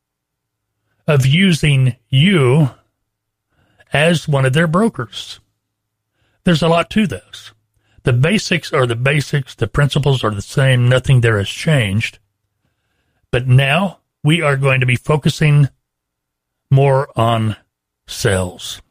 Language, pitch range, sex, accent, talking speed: English, 105-150 Hz, male, American, 120 wpm